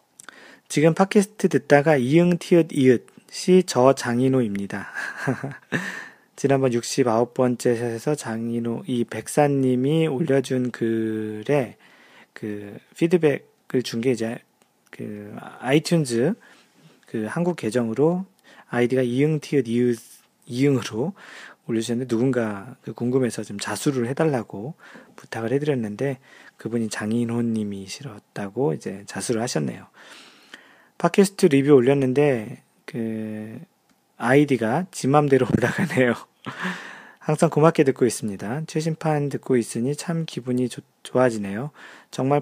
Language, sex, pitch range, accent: Korean, male, 115-150 Hz, native